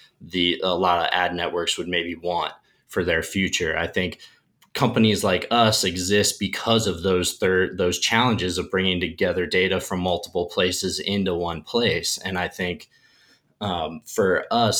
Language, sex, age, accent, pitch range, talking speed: English, male, 20-39, American, 90-110 Hz, 160 wpm